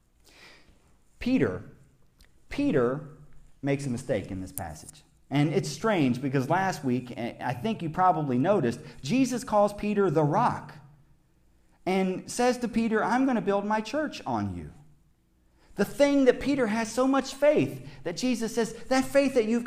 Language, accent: English, American